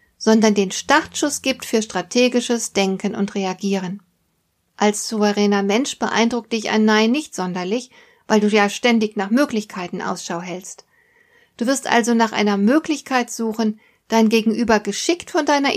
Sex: female